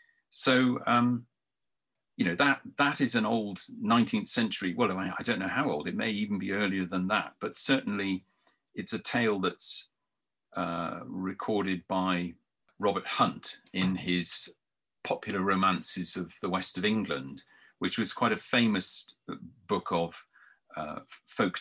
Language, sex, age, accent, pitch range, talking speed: English, male, 40-59, British, 90-120 Hz, 145 wpm